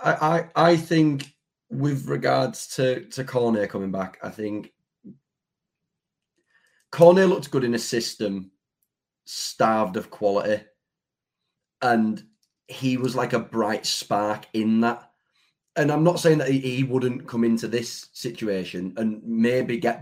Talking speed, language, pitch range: 135 wpm, English, 105-130 Hz